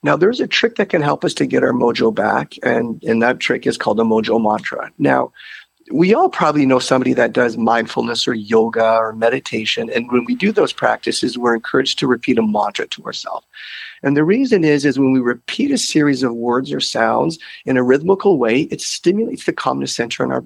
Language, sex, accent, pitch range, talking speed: English, male, American, 115-180 Hz, 215 wpm